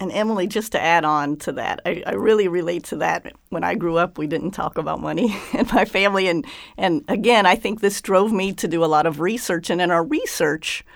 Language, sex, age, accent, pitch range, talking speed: English, female, 50-69, American, 165-215 Hz, 240 wpm